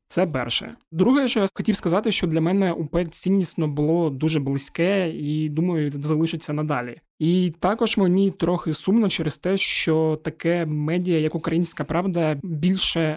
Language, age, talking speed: Ukrainian, 20-39, 150 wpm